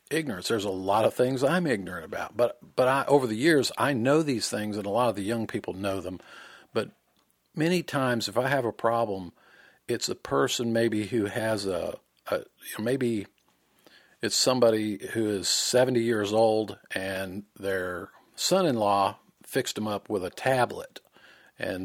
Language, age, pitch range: English, 50-69, 100-120 Hz